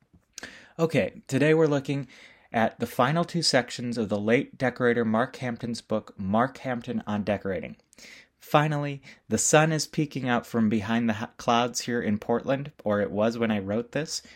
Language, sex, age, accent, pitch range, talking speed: English, male, 30-49, American, 105-135 Hz, 165 wpm